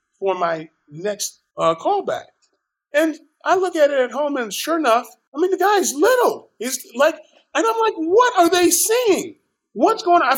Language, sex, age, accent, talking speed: English, male, 40-59, American, 190 wpm